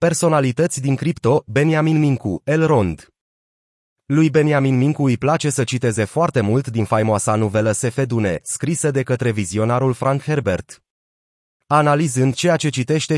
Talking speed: 130 wpm